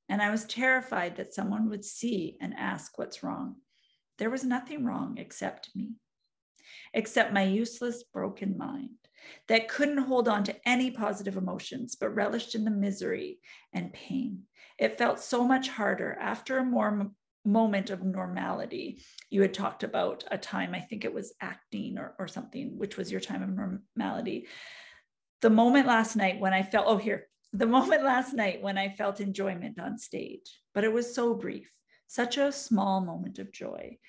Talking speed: 175 wpm